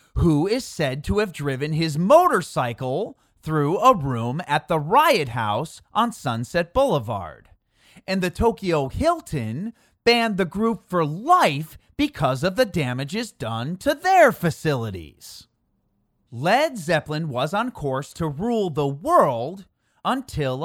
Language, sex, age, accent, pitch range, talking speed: English, male, 30-49, American, 135-215 Hz, 130 wpm